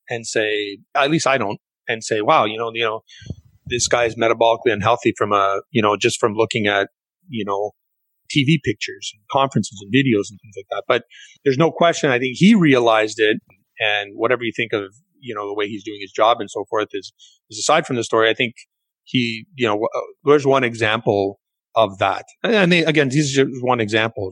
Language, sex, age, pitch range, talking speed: English, male, 30-49, 115-165 Hz, 215 wpm